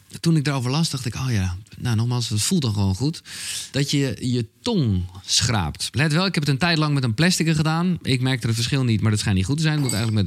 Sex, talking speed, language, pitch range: male, 280 wpm, Dutch, 110-145 Hz